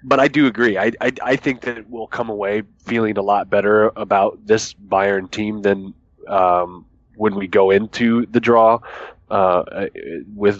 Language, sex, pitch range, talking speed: English, male, 100-115 Hz, 170 wpm